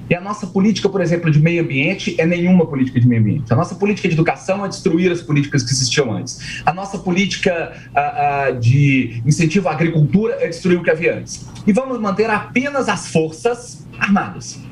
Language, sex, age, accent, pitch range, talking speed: Portuguese, male, 40-59, Brazilian, 150-210 Hz, 200 wpm